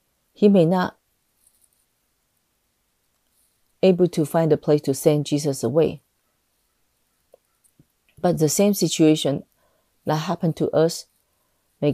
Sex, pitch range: female, 145-170 Hz